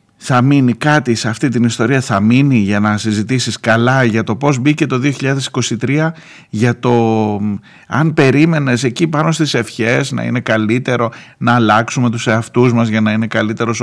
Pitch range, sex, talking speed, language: 95-125 Hz, male, 170 wpm, Greek